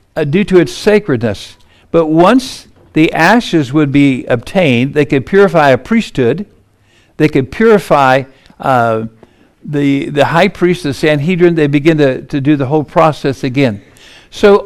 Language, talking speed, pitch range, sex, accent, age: English, 145 wpm, 125-180 Hz, male, American, 60-79